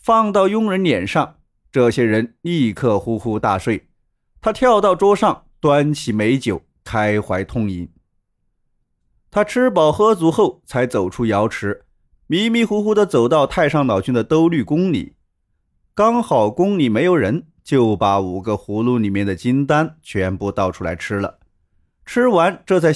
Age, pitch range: 30-49, 100-170 Hz